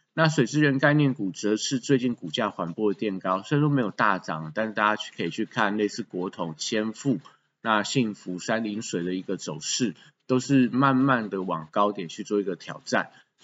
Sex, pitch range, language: male, 95-125 Hz, Chinese